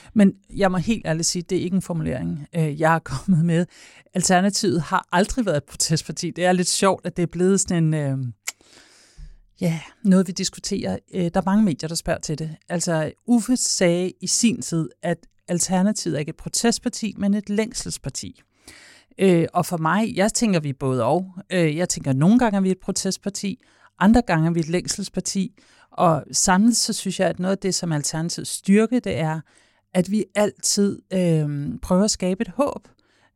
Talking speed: 195 wpm